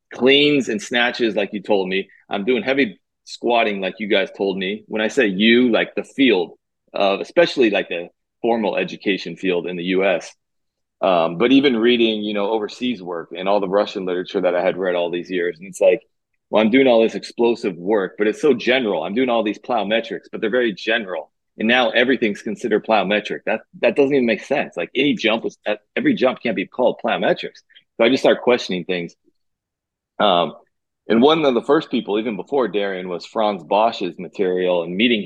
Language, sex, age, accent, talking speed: Italian, male, 30-49, American, 205 wpm